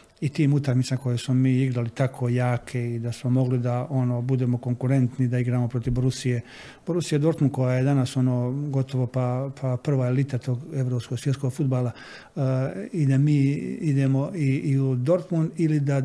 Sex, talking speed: male, 180 wpm